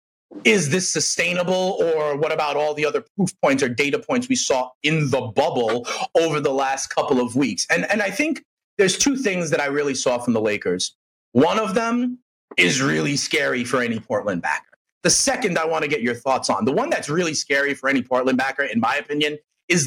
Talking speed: 215 wpm